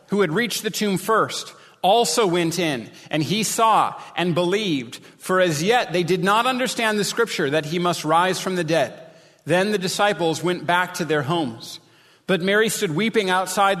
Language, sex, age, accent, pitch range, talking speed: English, male, 40-59, American, 170-215 Hz, 185 wpm